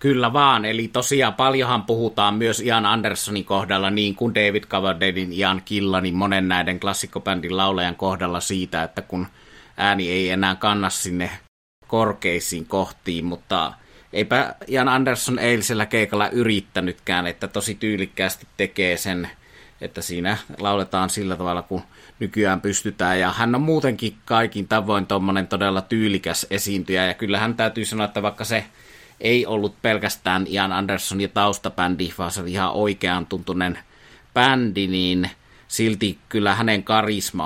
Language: Finnish